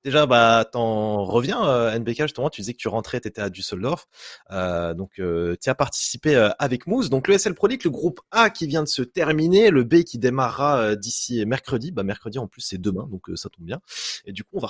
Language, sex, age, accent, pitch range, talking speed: French, male, 20-39, French, 105-140 Hz, 250 wpm